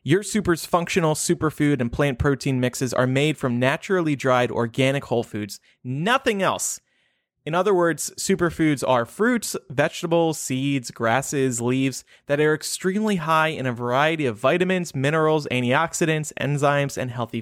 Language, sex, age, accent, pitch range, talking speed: English, male, 30-49, American, 130-175 Hz, 145 wpm